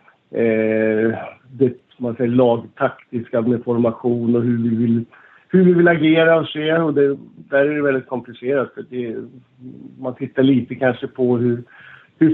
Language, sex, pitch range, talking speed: Swedish, male, 115-135 Hz, 160 wpm